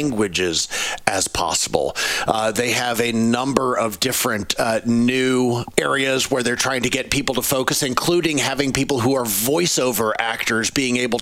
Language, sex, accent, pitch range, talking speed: English, male, American, 115-140 Hz, 160 wpm